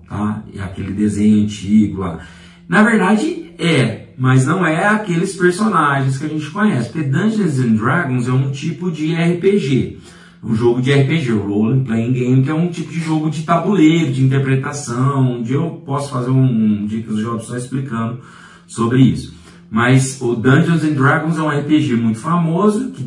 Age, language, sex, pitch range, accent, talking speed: 40-59, Portuguese, male, 105-155 Hz, Brazilian, 180 wpm